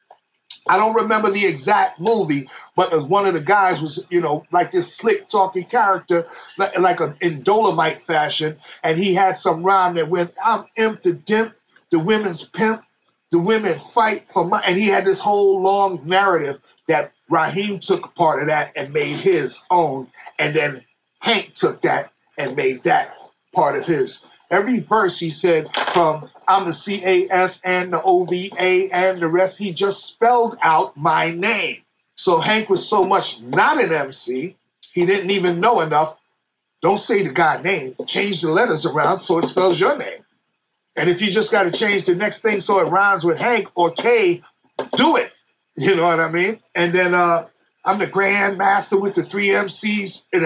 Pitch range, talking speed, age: 175-205 Hz, 180 wpm, 40-59